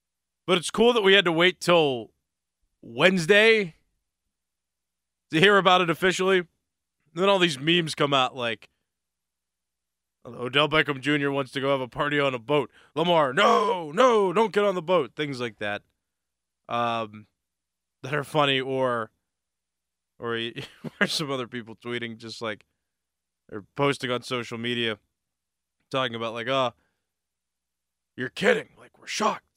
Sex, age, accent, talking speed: male, 20-39, American, 150 wpm